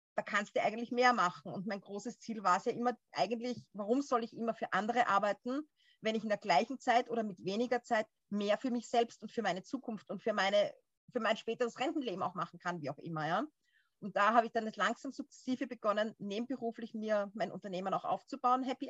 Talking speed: 215 wpm